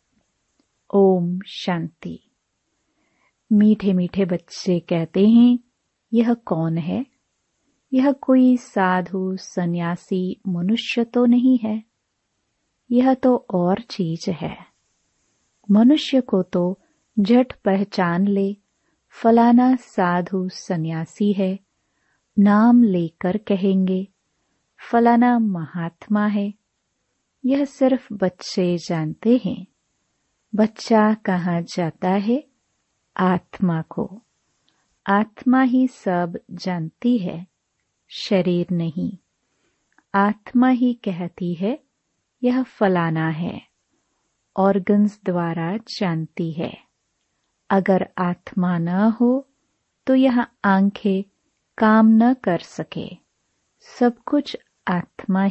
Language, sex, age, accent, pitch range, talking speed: Hindi, female, 30-49, native, 180-240 Hz, 90 wpm